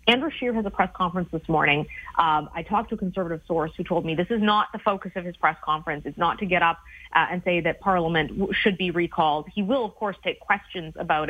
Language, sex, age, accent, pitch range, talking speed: English, female, 30-49, American, 170-210 Hz, 250 wpm